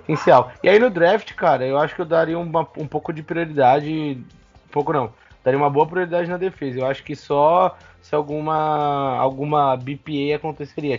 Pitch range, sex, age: 135-170 Hz, male, 20-39